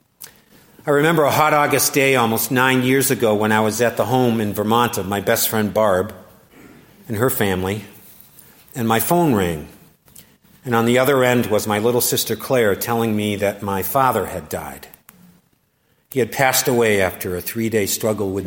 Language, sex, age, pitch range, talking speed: English, male, 50-69, 100-130 Hz, 180 wpm